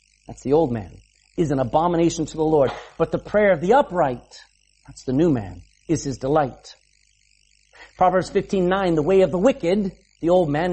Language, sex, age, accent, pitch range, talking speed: English, male, 50-69, American, 140-200 Hz, 190 wpm